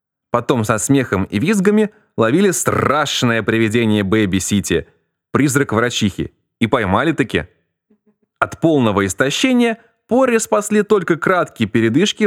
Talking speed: 105 wpm